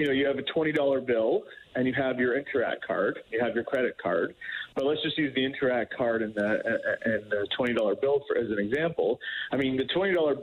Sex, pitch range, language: male, 115-135 Hz, English